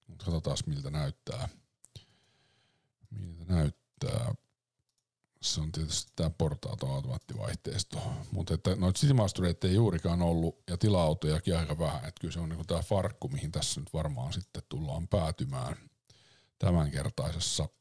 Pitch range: 80-120 Hz